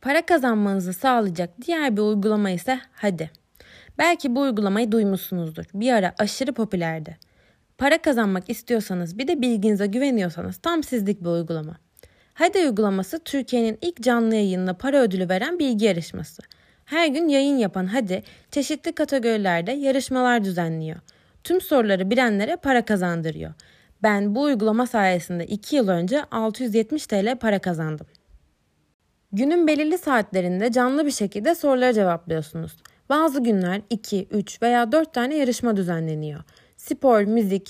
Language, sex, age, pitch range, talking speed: Turkish, female, 30-49, 185-265 Hz, 130 wpm